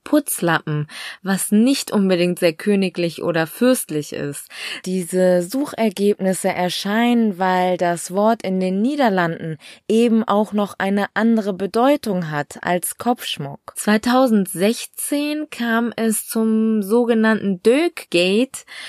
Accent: German